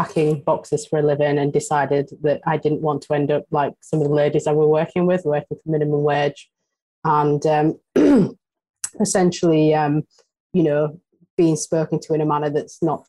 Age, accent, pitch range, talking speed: 30-49, British, 150-165 Hz, 190 wpm